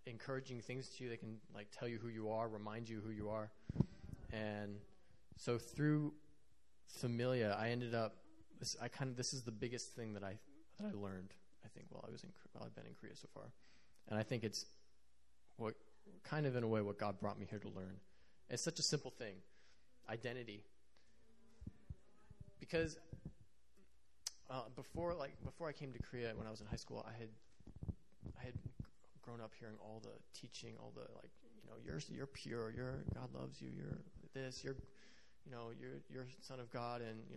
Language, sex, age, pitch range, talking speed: English, male, 20-39, 105-135 Hz, 195 wpm